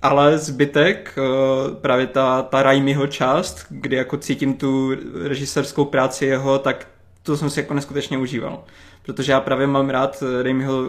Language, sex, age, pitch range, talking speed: Czech, male, 20-39, 130-145 Hz, 150 wpm